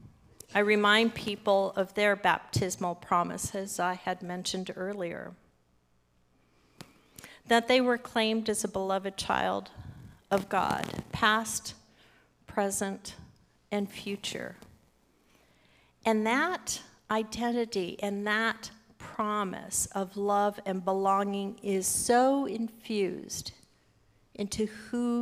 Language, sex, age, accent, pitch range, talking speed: English, female, 50-69, American, 180-210 Hz, 95 wpm